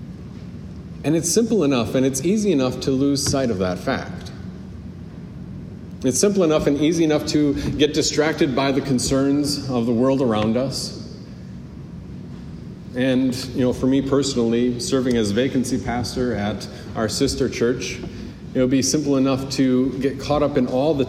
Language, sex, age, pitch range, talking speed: English, male, 40-59, 120-150 Hz, 160 wpm